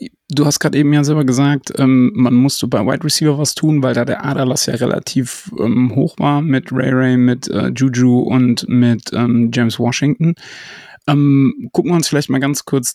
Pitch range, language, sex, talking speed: 125-150 Hz, German, male, 200 wpm